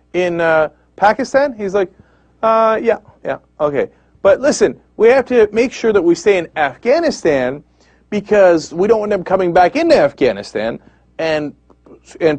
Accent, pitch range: American, 180-275 Hz